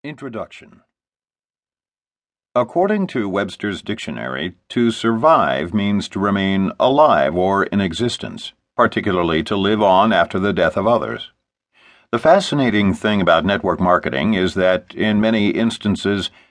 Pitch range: 100-125 Hz